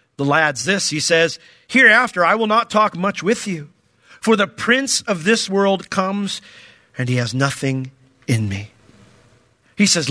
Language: English